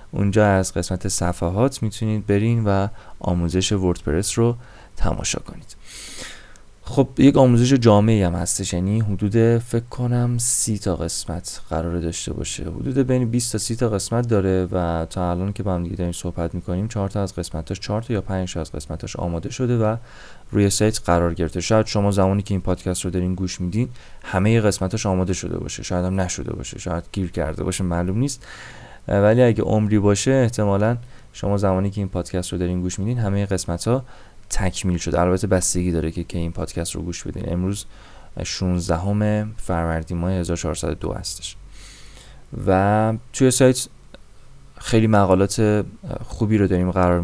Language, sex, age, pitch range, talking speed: Persian, male, 30-49, 90-110 Hz, 170 wpm